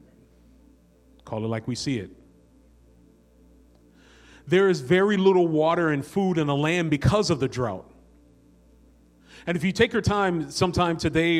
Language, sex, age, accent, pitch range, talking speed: English, male, 40-59, American, 140-175 Hz, 145 wpm